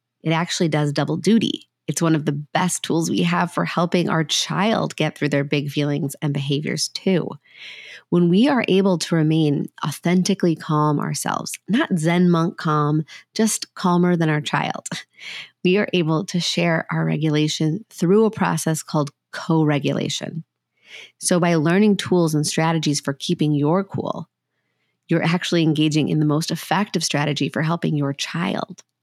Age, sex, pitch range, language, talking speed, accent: 30-49, female, 150-185 Hz, English, 160 wpm, American